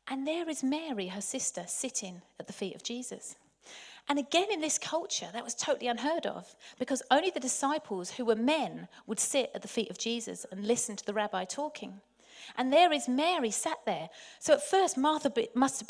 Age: 40-59